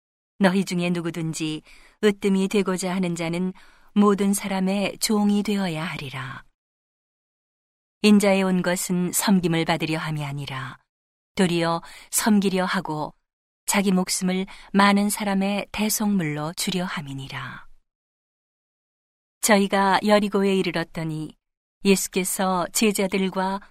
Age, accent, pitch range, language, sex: 40-59, native, 165-200 Hz, Korean, female